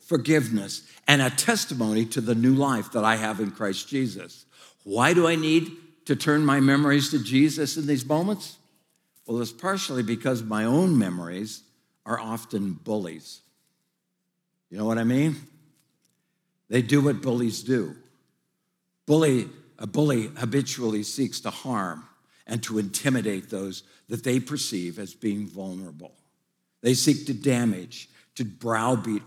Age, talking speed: 60-79, 145 wpm